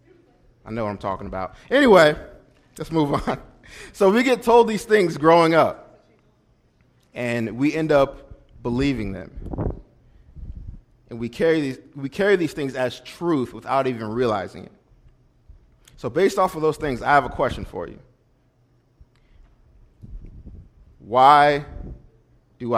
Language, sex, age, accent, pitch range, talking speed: English, male, 30-49, American, 115-155 Hz, 135 wpm